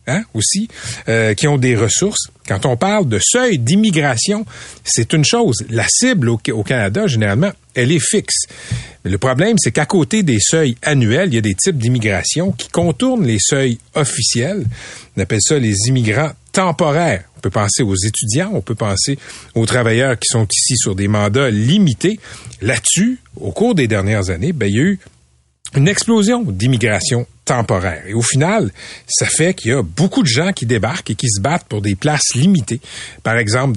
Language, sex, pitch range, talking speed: French, male, 110-155 Hz, 185 wpm